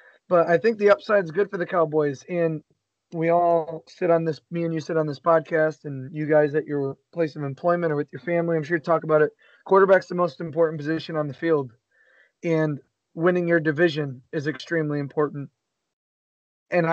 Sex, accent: male, American